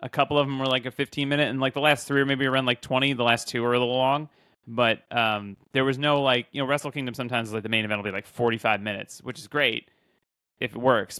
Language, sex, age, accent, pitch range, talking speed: English, male, 30-49, American, 115-135 Hz, 285 wpm